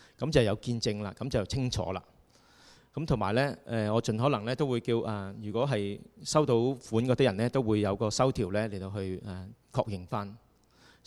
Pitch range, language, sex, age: 105-130 Hz, Chinese, male, 30-49